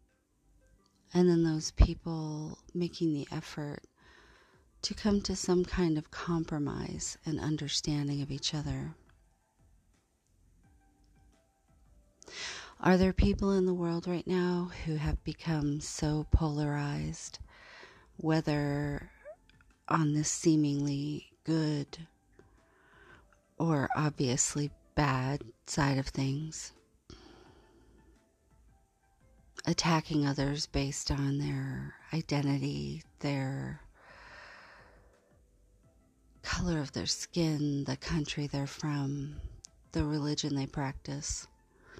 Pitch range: 140-160 Hz